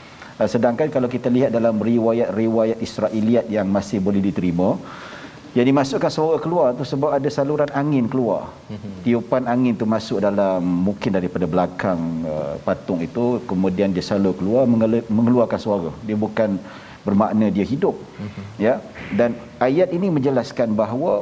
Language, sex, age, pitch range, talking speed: Malayalam, male, 50-69, 115-150 Hz, 140 wpm